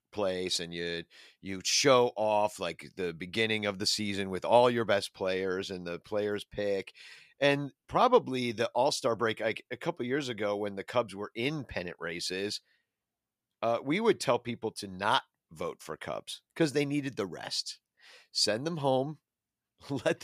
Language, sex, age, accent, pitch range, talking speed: English, male, 40-59, American, 95-130 Hz, 170 wpm